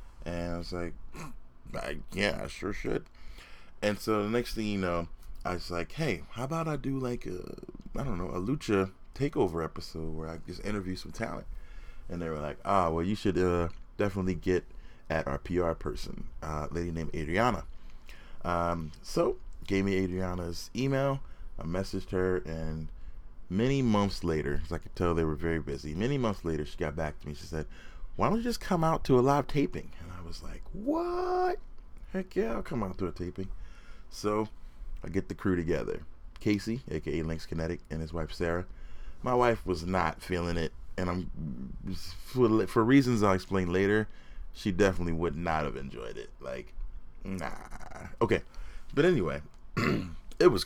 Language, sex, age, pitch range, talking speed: English, male, 30-49, 80-105 Hz, 180 wpm